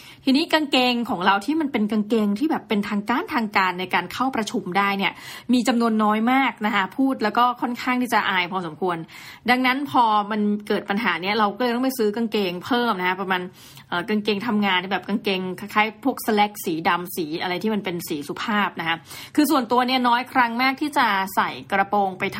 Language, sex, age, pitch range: Thai, female, 20-39, 185-240 Hz